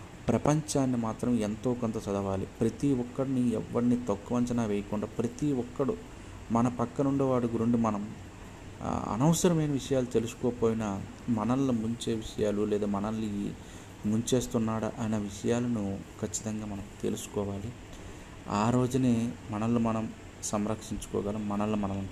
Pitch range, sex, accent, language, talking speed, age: 100-120 Hz, male, native, Telugu, 105 wpm, 30-49